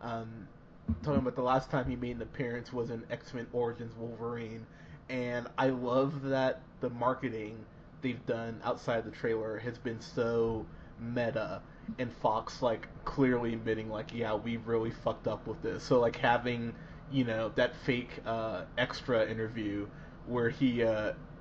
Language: English